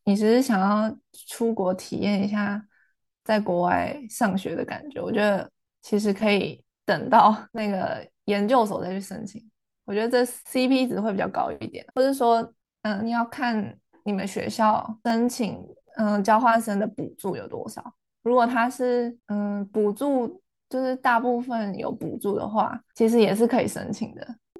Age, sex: 20-39, female